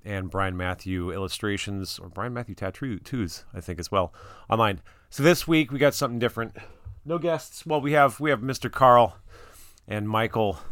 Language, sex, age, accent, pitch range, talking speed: English, male, 30-49, American, 95-120 Hz, 175 wpm